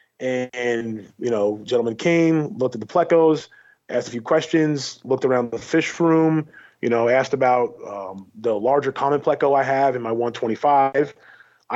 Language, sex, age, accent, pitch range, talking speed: English, male, 30-49, American, 125-150 Hz, 165 wpm